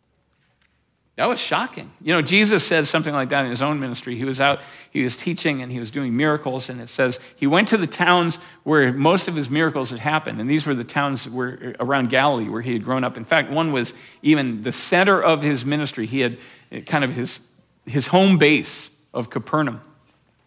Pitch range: 140-180 Hz